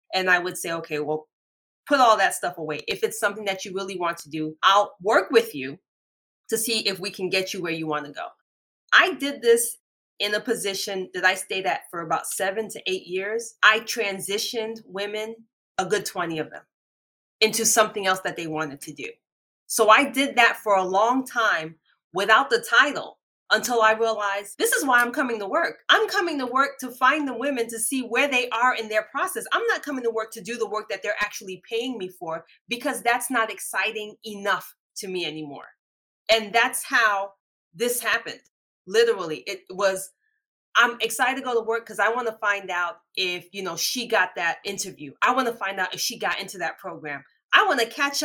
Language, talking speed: English, 210 wpm